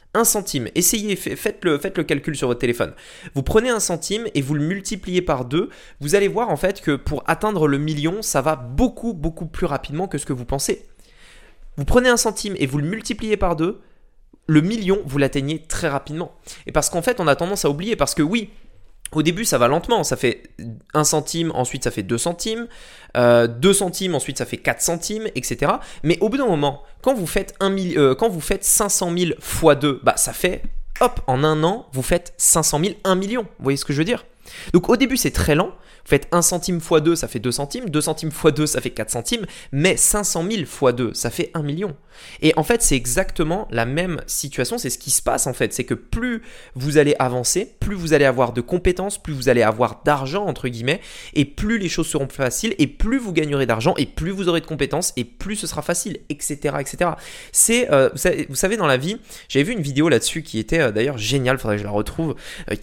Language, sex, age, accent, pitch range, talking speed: French, male, 20-39, French, 140-195 Hz, 240 wpm